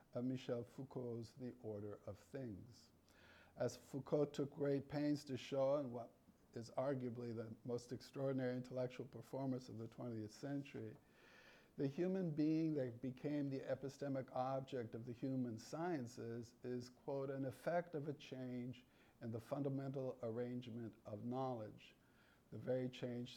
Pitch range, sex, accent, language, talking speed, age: 115-145 Hz, male, American, English, 140 wpm, 50-69